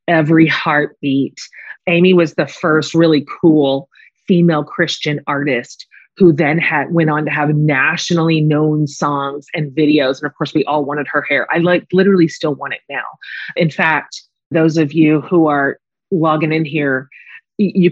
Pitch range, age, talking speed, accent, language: 150-180 Hz, 30-49, 165 wpm, American, English